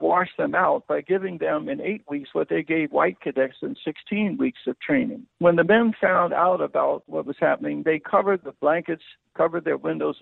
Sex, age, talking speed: male, 60-79, 205 wpm